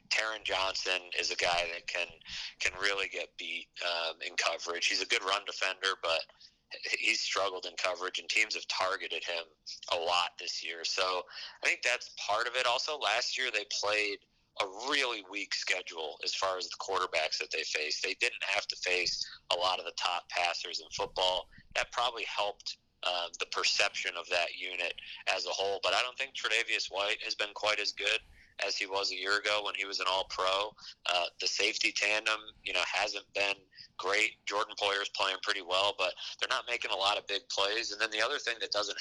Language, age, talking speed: English, 30-49, 210 wpm